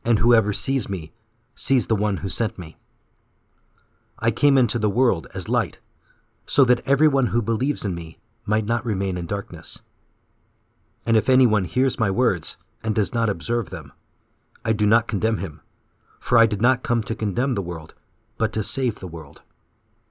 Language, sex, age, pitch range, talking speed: English, male, 40-59, 100-115 Hz, 175 wpm